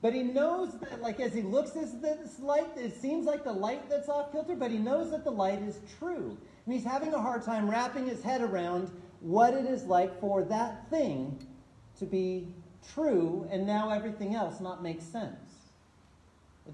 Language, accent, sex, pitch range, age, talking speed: English, American, male, 195-260 Hz, 40-59, 195 wpm